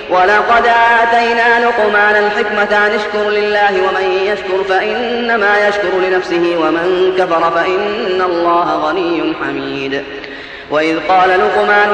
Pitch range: 180-250 Hz